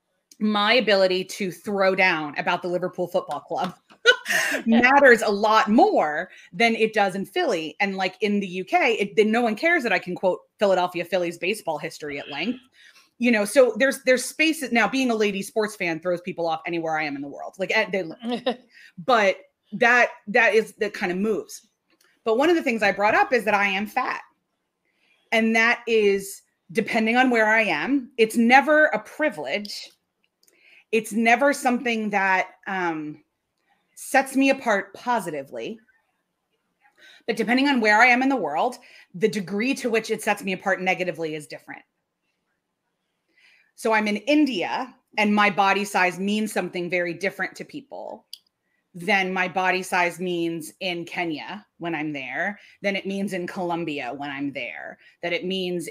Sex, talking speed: female, 175 wpm